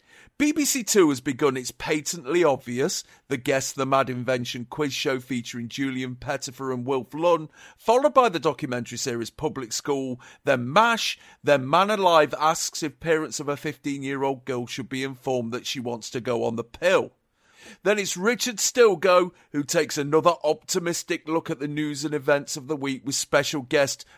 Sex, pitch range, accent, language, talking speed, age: male, 130-160 Hz, British, English, 175 wpm, 40-59